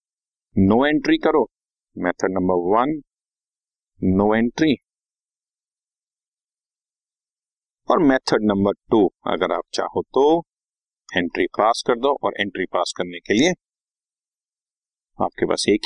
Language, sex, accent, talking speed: Hindi, male, native, 115 wpm